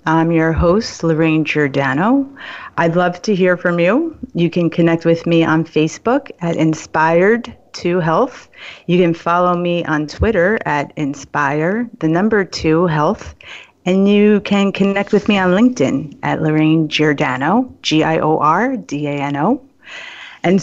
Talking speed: 120 wpm